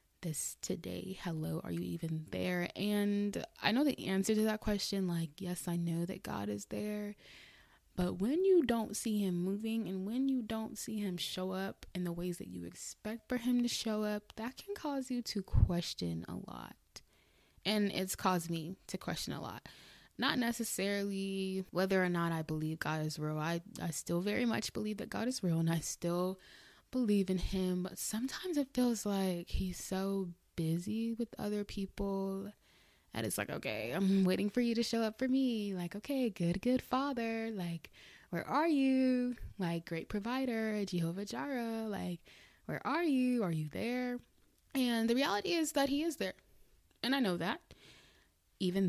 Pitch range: 175-230 Hz